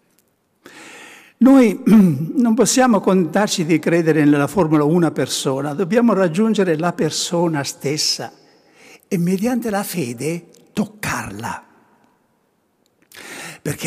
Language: Italian